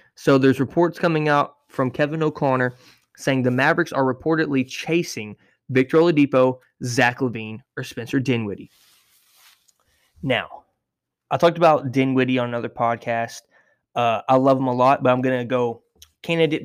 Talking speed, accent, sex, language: 150 wpm, American, male, English